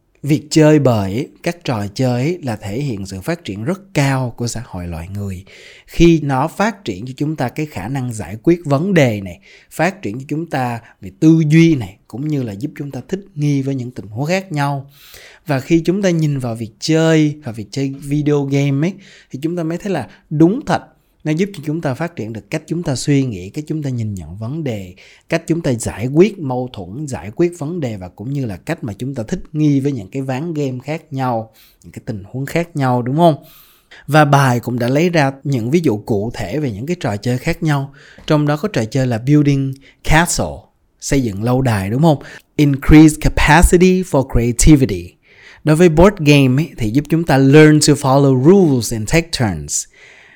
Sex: male